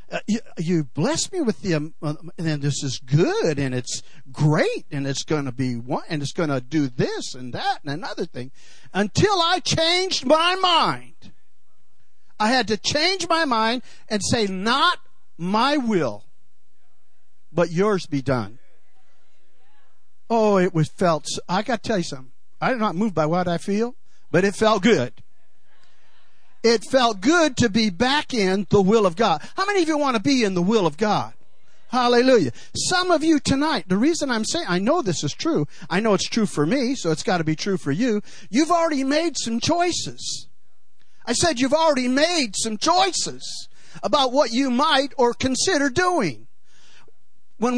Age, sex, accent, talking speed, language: 50-69, male, American, 175 wpm, English